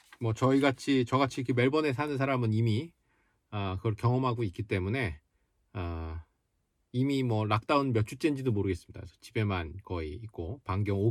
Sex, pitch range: male, 95-120 Hz